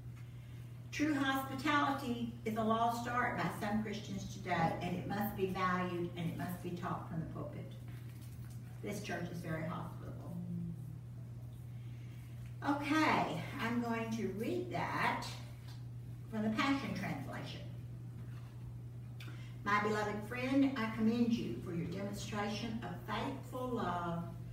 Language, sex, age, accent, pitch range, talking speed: English, female, 60-79, American, 120-175 Hz, 120 wpm